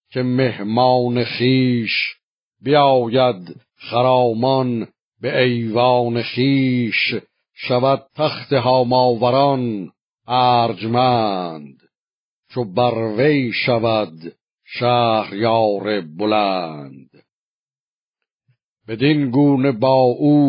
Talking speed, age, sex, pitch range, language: 65 wpm, 50-69, male, 115-135 Hz, Persian